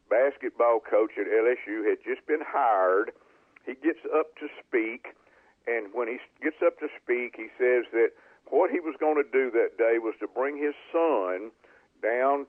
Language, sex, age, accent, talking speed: English, male, 50-69, American, 180 wpm